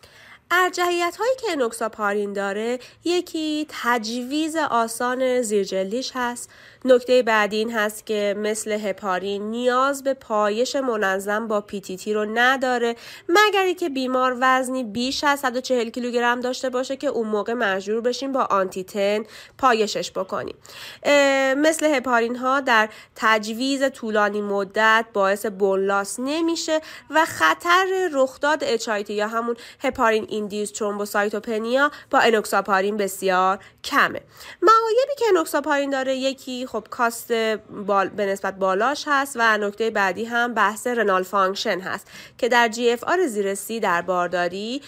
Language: Persian